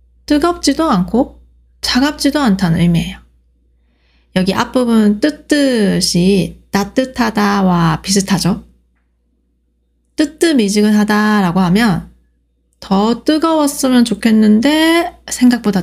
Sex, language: female, Korean